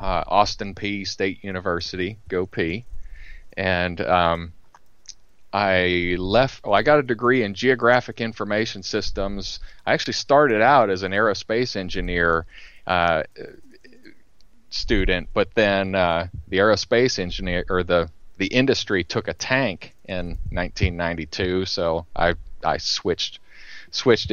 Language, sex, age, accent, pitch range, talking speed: English, male, 30-49, American, 90-100 Hz, 125 wpm